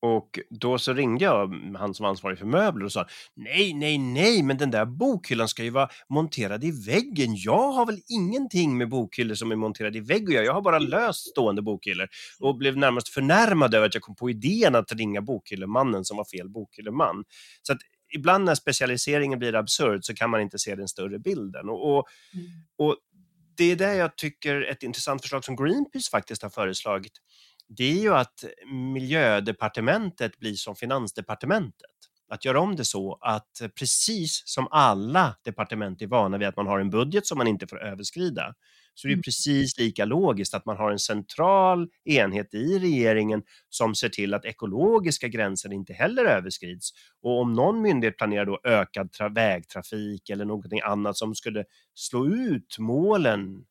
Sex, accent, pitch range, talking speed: male, native, 105-150 Hz, 180 wpm